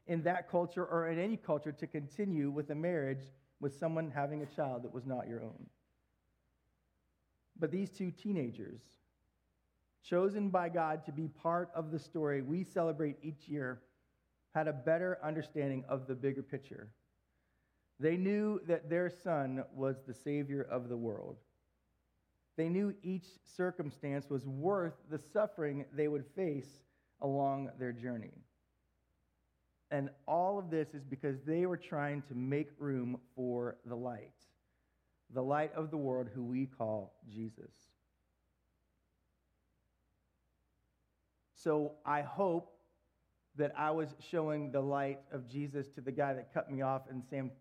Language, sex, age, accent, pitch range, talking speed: English, male, 40-59, American, 125-170 Hz, 145 wpm